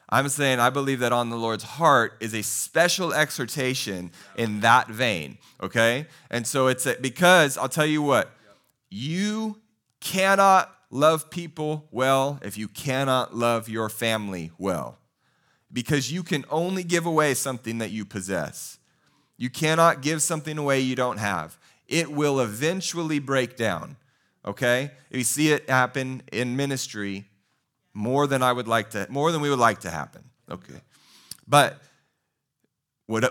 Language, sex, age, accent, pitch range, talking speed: English, male, 30-49, American, 110-150 Hz, 150 wpm